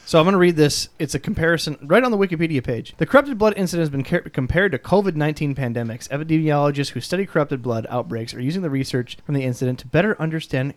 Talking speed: 230 wpm